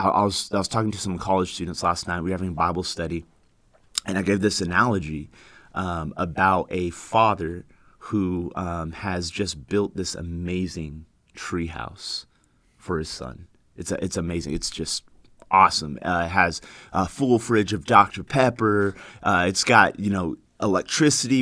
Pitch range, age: 90-115 Hz, 30-49